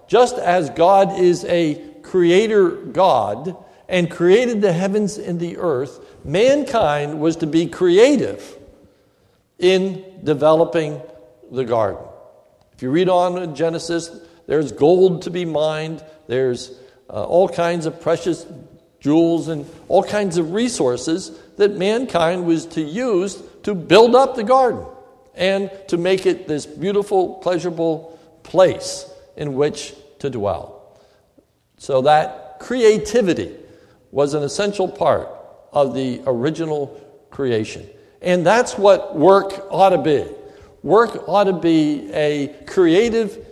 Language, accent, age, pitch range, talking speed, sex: English, American, 60-79, 150-200 Hz, 125 wpm, male